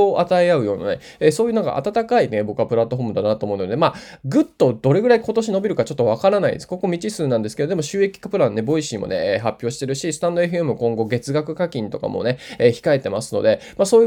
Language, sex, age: Japanese, male, 20-39